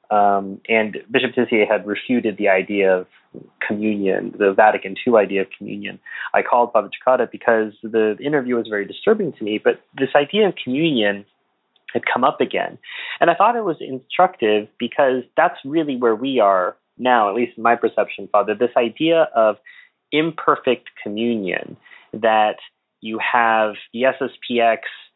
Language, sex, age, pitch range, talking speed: English, male, 30-49, 110-145 Hz, 155 wpm